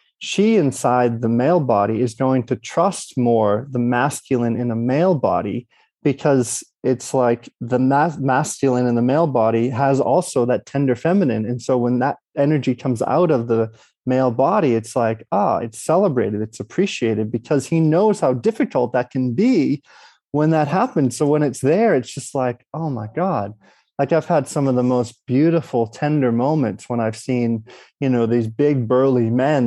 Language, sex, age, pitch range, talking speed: English, male, 30-49, 115-140 Hz, 180 wpm